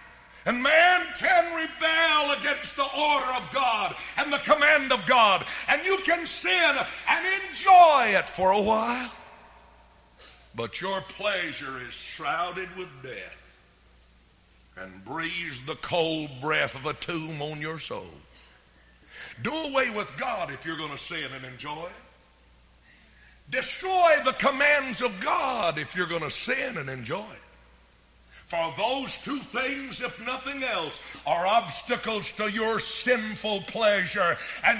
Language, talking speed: English, 140 wpm